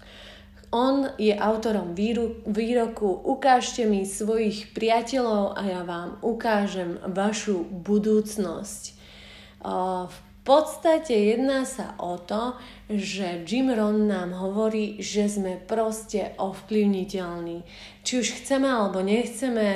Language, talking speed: Slovak, 105 wpm